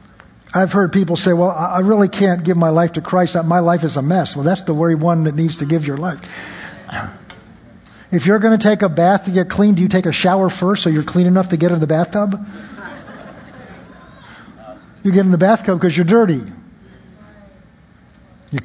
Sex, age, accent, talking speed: male, 50-69, American, 200 wpm